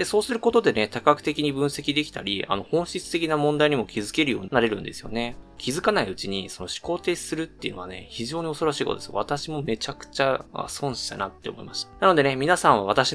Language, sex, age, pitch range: Japanese, male, 20-39, 105-150 Hz